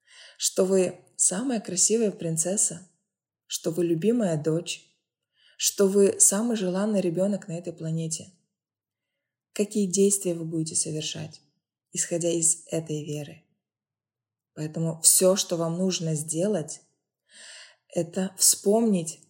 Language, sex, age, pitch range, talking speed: Russian, female, 20-39, 155-195 Hz, 105 wpm